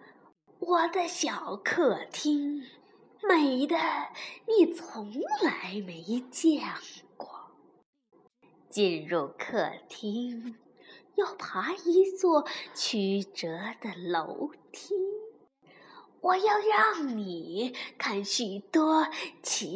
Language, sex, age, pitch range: Chinese, female, 20-39, 245-380 Hz